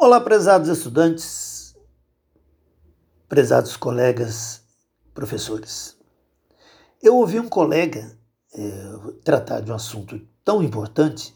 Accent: Brazilian